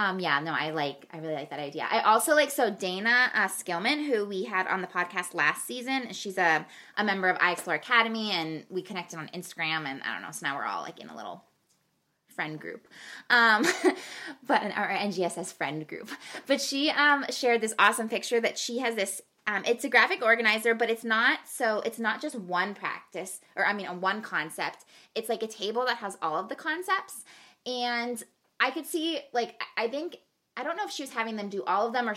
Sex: female